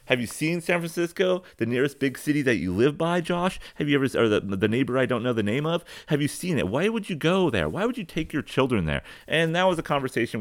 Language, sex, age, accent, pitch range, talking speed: English, male, 30-49, American, 100-145 Hz, 275 wpm